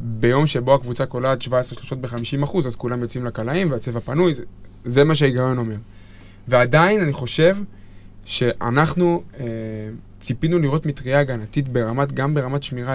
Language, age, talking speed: Hebrew, 20-39, 150 wpm